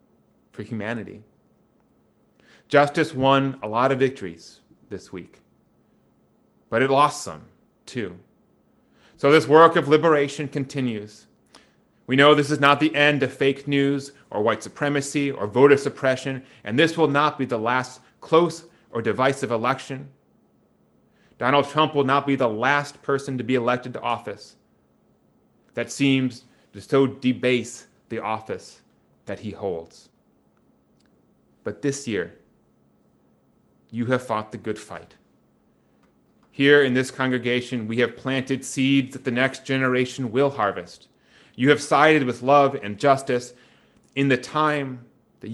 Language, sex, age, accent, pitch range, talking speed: English, male, 30-49, American, 120-140 Hz, 140 wpm